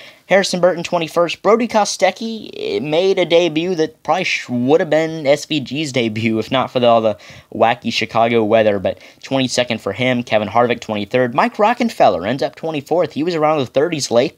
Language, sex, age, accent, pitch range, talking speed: English, male, 10-29, American, 110-150 Hz, 180 wpm